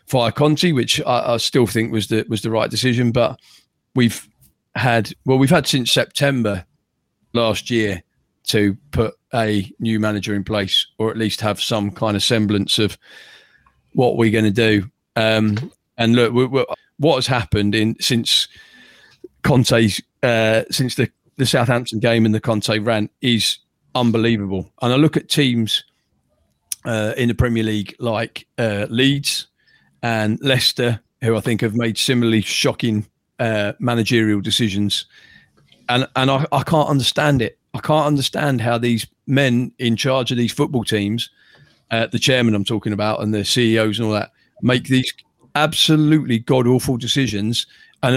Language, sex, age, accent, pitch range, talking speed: English, male, 40-59, British, 110-130 Hz, 160 wpm